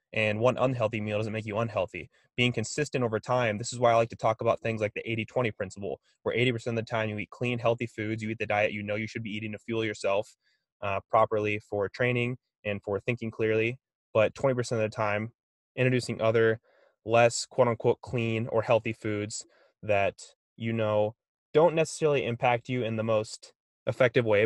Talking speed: 205 wpm